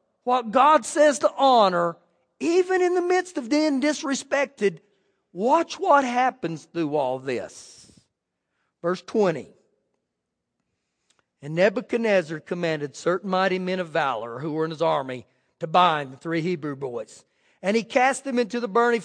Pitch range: 215-300 Hz